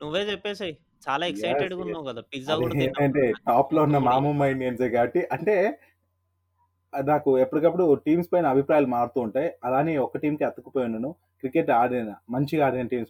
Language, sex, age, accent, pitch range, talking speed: Telugu, male, 30-49, native, 110-140 Hz, 135 wpm